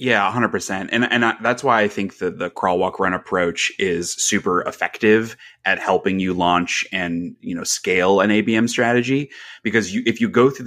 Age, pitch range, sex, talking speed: 30-49, 90-120 Hz, male, 200 wpm